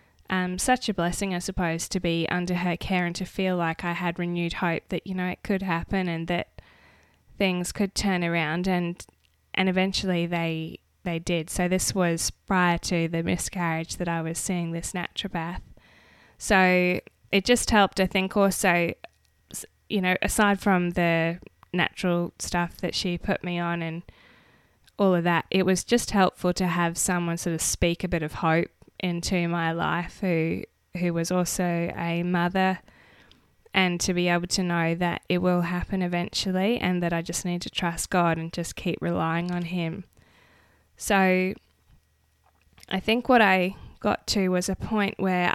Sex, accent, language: female, Australian, English